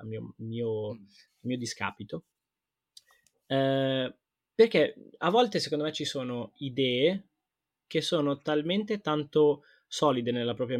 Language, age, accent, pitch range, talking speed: Italian, 20-39, native, 120-160 Hz, 110 wpm